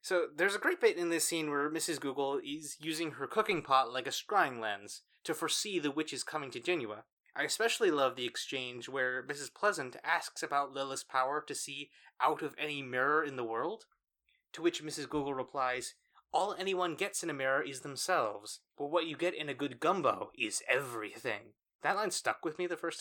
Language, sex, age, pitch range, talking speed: English, male, 20-39, 130-175 Hz, 205 wpm